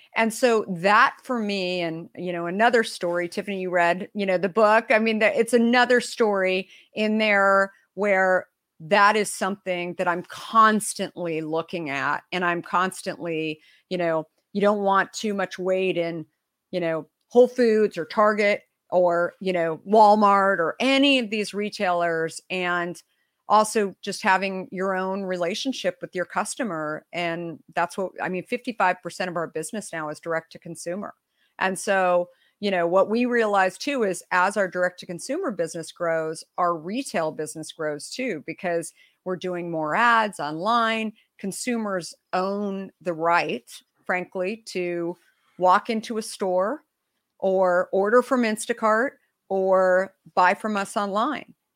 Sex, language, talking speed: female, English, 150 wpm